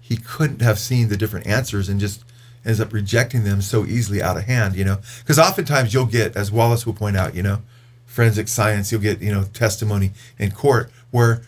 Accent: American